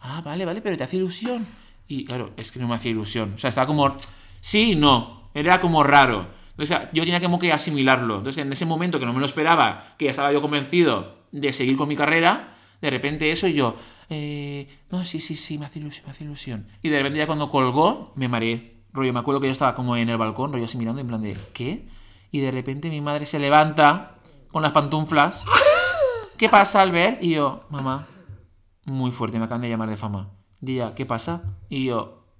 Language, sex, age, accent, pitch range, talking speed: Spanish, male, 30-49, Spanish, 115-175 Hz, 230 wpm